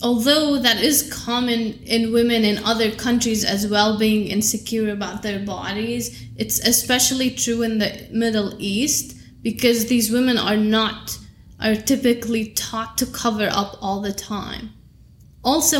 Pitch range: 210-245 Hz